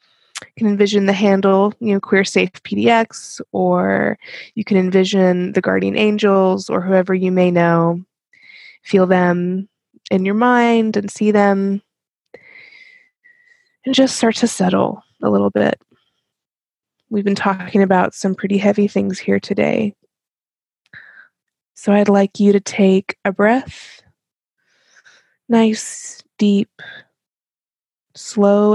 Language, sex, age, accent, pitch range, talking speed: English, female, 20-39, American, 190-230 Hz, 125 wpm